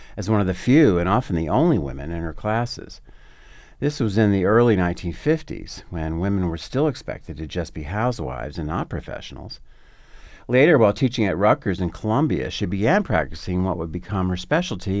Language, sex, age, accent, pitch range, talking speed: English, male, 50-69, American, 85-120 Hz, 185 wpm